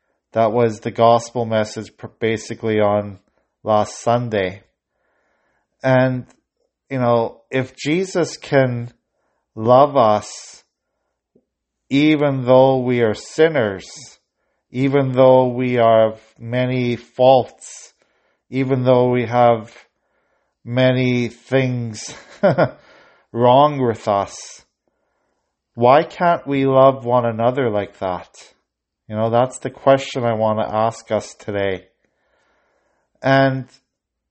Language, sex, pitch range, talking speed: English, male, 110-135 Hz, 100 wpm